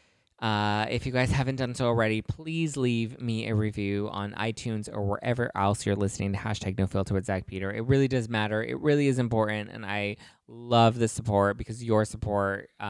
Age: 20-39